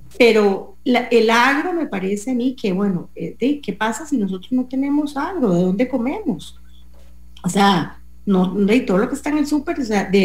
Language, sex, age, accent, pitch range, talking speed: English, female, 40-59, Colombian, 185-260 Hz, 200 wpm